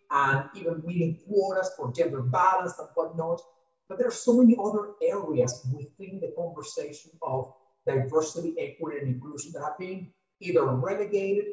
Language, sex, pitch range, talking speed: English, male, 160-205 Hz, 150 wpm